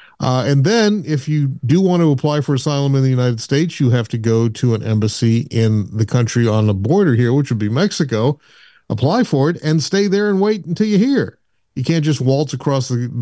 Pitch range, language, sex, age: 120-155 Hz, English, male, 40-59